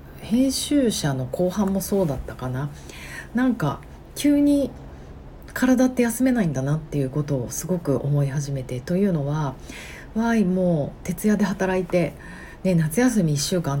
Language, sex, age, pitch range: Japanese, female, 40-59, 140-185 Hz